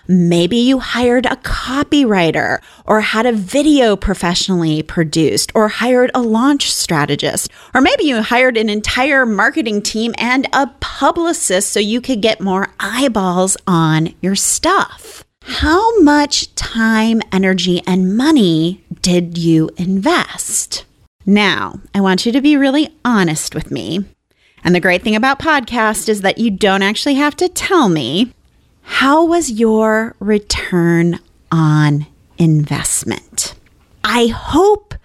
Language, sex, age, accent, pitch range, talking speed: English, female, 30-49, American, 190-295 Hz, 135 wpm